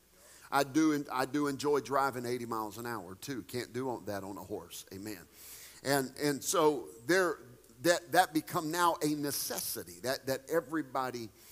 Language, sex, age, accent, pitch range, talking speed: English, male, 50-69, American, 125-165 Hz, 160 wpm